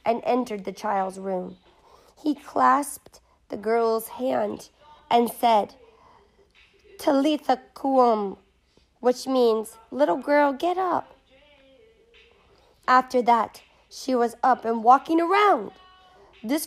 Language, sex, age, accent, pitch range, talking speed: English, female, 40-59, American, 215-285 Hz, 105 wpm